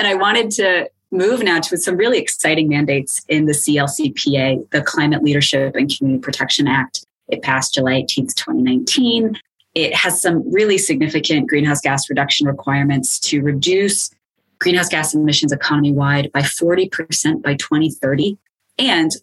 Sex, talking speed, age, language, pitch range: female, 145 wpm, 20-39, English, 140-165 Hz